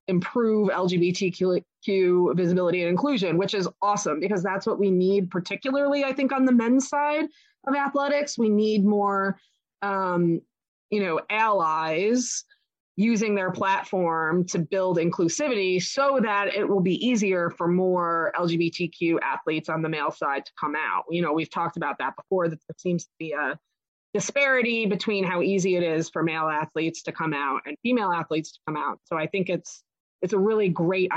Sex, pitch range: female, 165-200 Hz